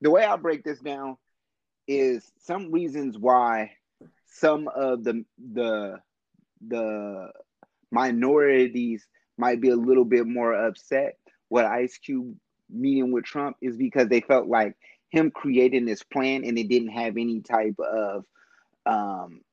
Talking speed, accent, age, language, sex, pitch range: 140 wpm, American, 30-49, English, male, 120-140 Hz